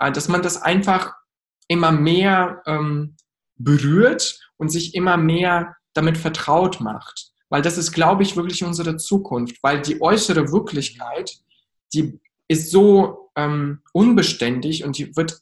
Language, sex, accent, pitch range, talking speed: German, male, German, 155-195 Hz, 135 wpm